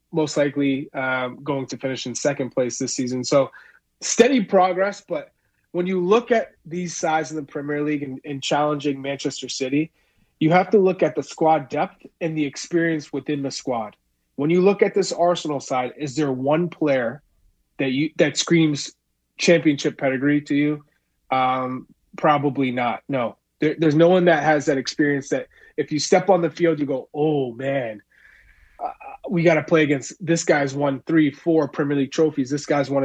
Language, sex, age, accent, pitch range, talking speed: English, male, 30-49, American, 135-160 Hz, 185 wpm